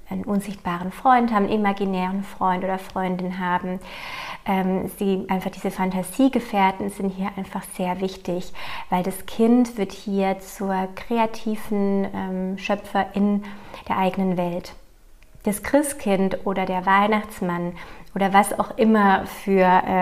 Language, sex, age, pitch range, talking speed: German, female, 30-49, 190-215 Hz, 130 wpm